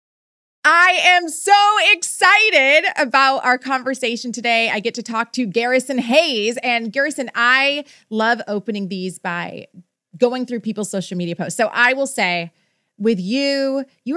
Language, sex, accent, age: English, female, American, 30-49